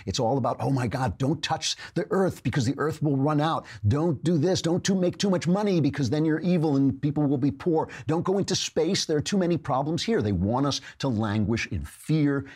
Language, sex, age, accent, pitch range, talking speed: English, male, 50-69, American, 100-150 Hz, 240 wpm